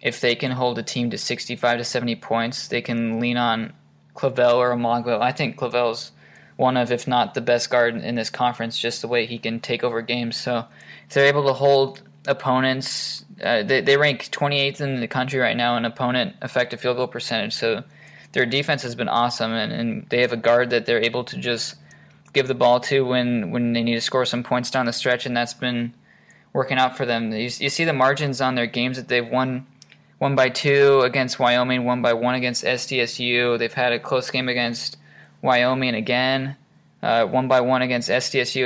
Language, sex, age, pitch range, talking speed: English, male, 20-39, 120-130 Hz, 210 wpm